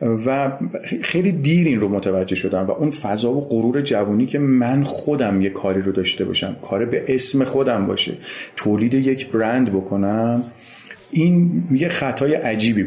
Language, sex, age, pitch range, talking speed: Persian, male, 40-59, 105-140 Hz, 160 wpm